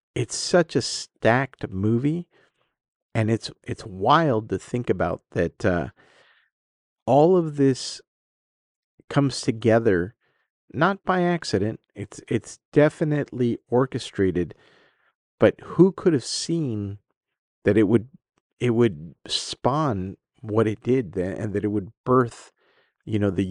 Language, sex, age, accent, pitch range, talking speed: English, male, 40-59, American, 100-125 Hz, 125 wpm